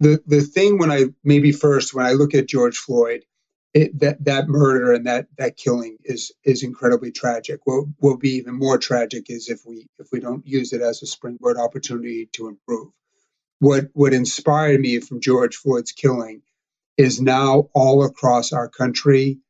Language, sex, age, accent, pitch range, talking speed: English, male, 40-59, American, 120-140 Hz, 180 wpm